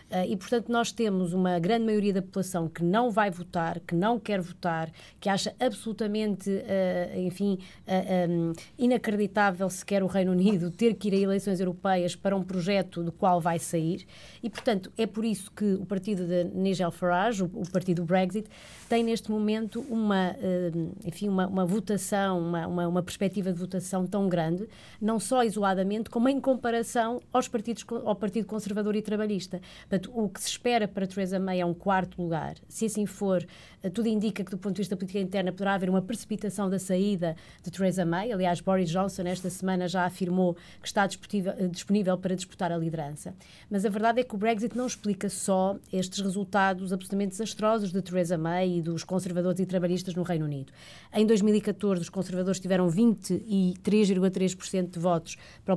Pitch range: 180-210 Hz